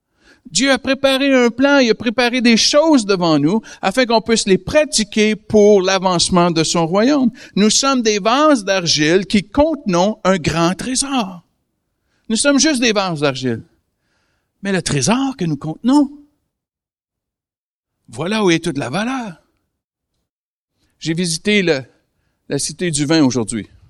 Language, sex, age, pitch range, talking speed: French, male, 60-79, 140-230 Hz, 145 wpm